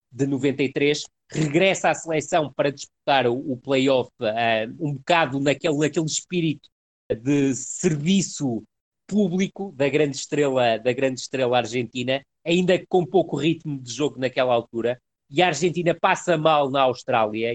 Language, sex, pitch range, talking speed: Portuguese, male, 135-175 Hz, 135 wpm